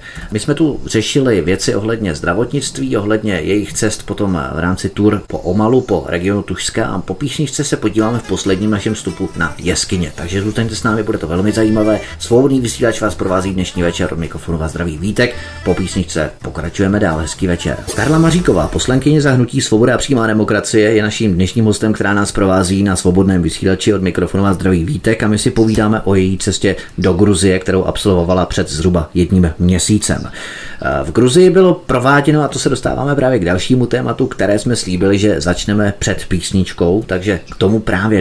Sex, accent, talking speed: male, native, 180 wpm